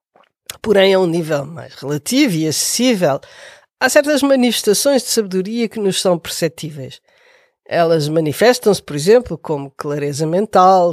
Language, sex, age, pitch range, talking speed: Portuguese, female, 50-69, 165-245 Hz, 130 wpm